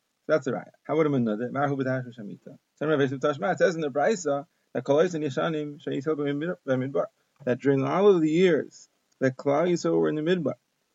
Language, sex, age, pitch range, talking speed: English, male, 30-49, 140-170 Hz, 155 wpm